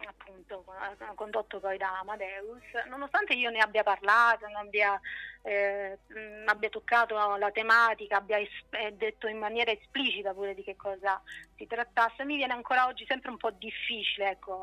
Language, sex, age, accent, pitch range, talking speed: Italian, female, 30-49, native, 205-240 Hz, 150 wpm